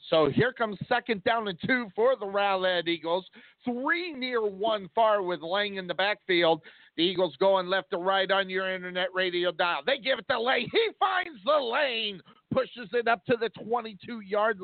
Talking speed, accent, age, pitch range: 190 wpm, American, 50-69, 190-235 Hz